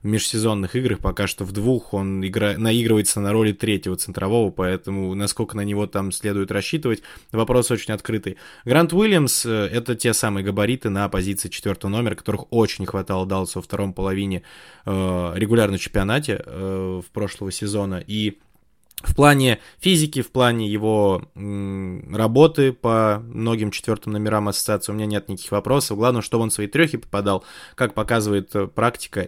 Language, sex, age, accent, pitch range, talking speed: Russian, male, 20-39, native, 100-115 Hz, 155 wpm